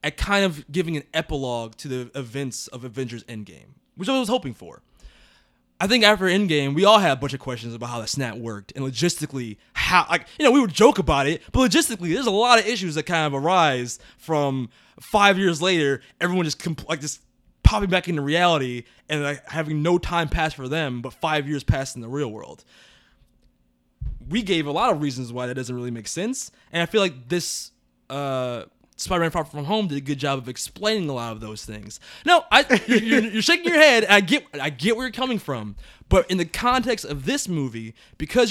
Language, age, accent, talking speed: English, 20-39, American, 220 wpm